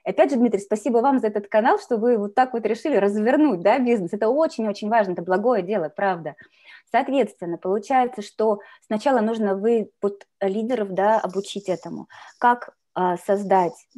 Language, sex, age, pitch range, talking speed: Russian, female, 20-39, 195-250 Hz, 165 wpm